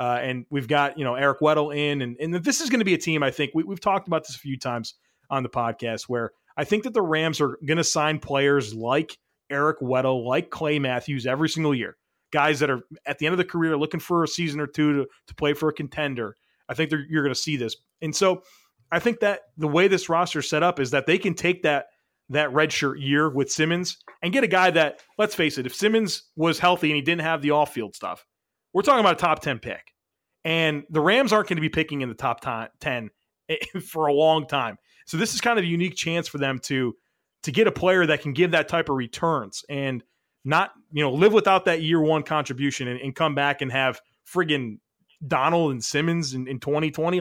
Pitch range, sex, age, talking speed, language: 135-170 Hz, male, 30-49, 240 wpm, English